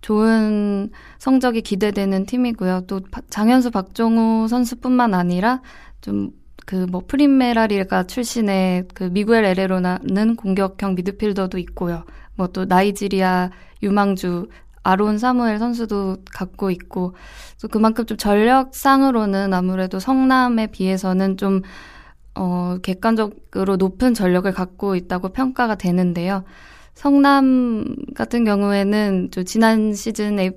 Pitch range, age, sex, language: 185-225 Hz, 20-39, female, Korean